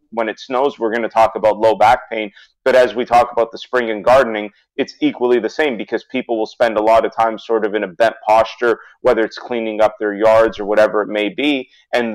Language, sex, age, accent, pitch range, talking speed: English, male, 30-49, American, 110-130 Hz, 245 wpm